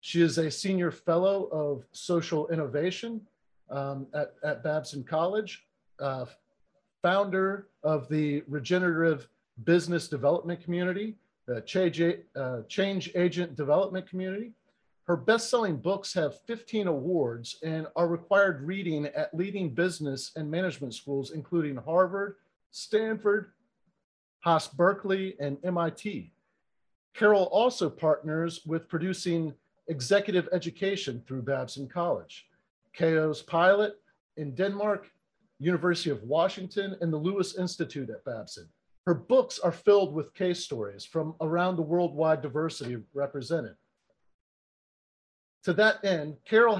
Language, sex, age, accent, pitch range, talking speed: English, male, 50-69, American, 155-190 Hz, 120 wpm